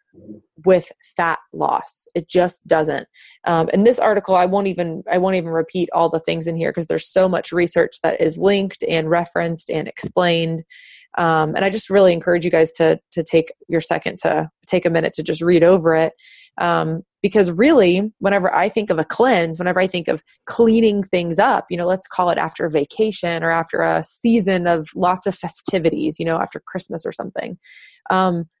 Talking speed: 200 wpm